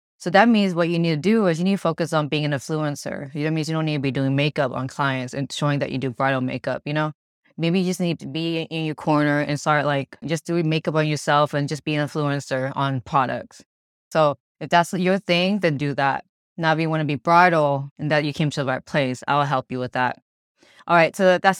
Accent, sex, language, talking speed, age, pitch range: American, female, English, 260 wpm, 20-39, 140-165 Hz